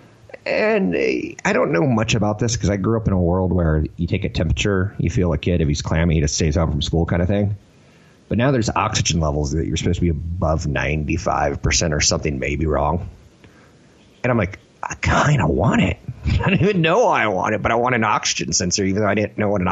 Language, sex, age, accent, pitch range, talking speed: English, male, 30-49, American, 80-100 Hz, 240 wpm